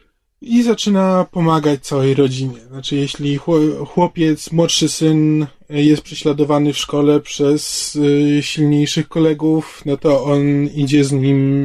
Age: 20-39